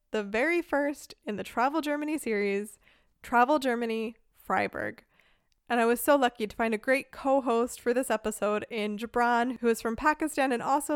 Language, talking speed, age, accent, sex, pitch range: English, 175 wpm, 20-39, American, female, 220-275 Hz